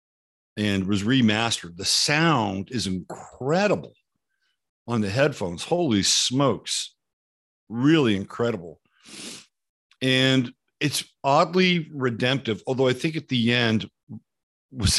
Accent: American